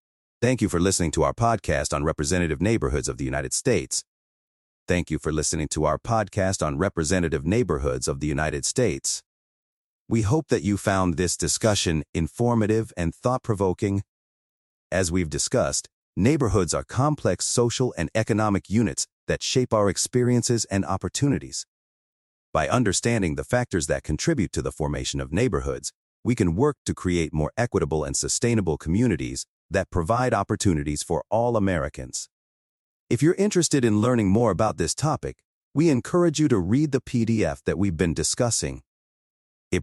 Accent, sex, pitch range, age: American, male, 80-115 Hz, 40-59